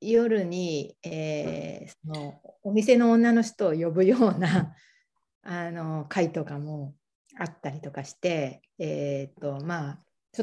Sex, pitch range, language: female, 155-215 Hz, Japanese